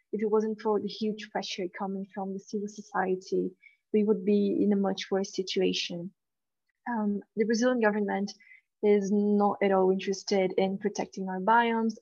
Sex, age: female, 20-39